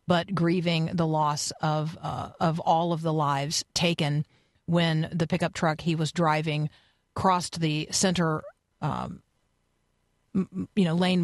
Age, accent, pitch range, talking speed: 40-59, American, 155-180 Hz, 140 wpm